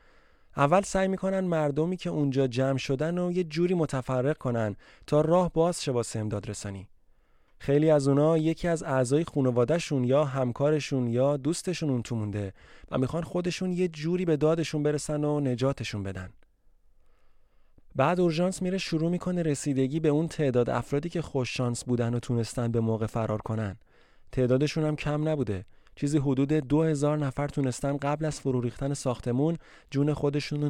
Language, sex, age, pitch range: Persian, male, 30-49, 125-155 Hz